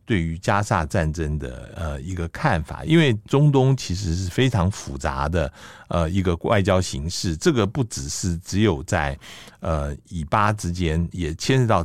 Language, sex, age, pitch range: Chinese, male, 60-79, 80-105 Hz